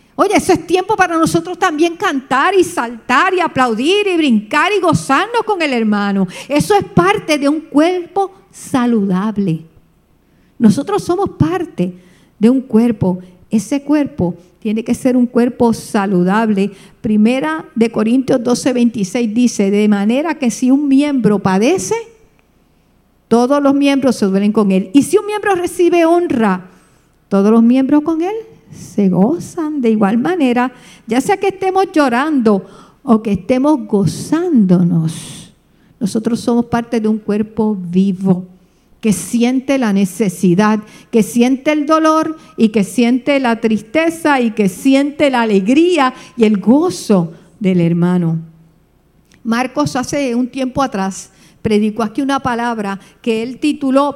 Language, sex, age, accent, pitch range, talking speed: English, female, 50-69, American, 205-290 Hz, 140 wpm